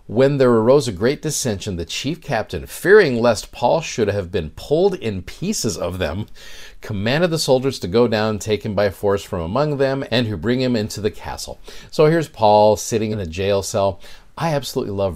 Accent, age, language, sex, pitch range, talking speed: American, 50-69, English, male, 100-125 Hz, 200 wpm